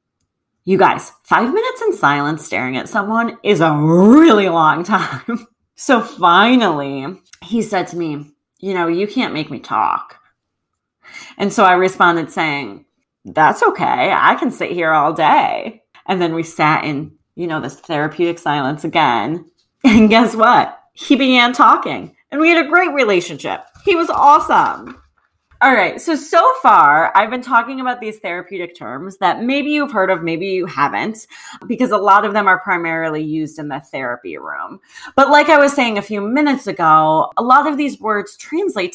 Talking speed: 175 wpm